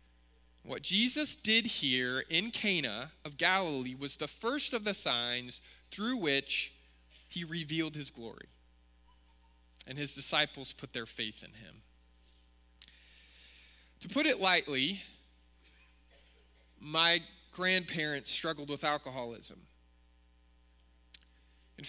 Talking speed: 105 wpm